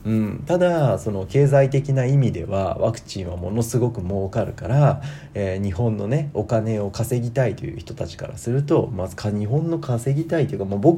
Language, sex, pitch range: Japanese, male, 105-135 Hz